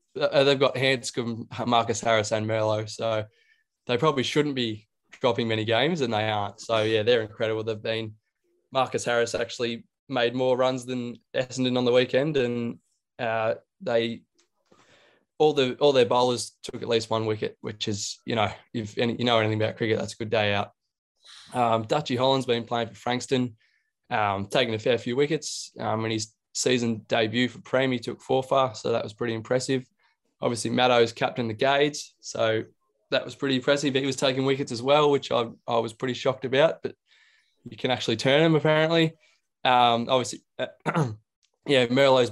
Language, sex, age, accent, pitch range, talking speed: English, male, 20-39, Australian, 110-135 Hz, 185 wpm